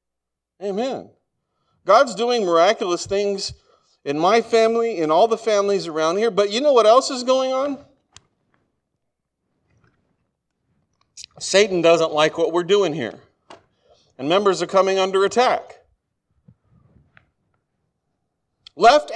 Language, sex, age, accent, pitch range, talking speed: English, male, 40-59, American, 165-235 Hz, 115 wpm